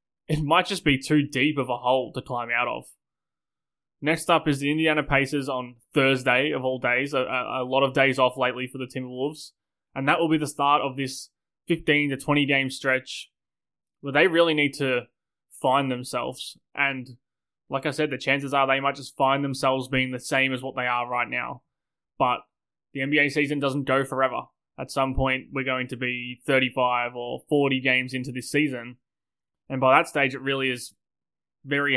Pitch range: 125-140 Hz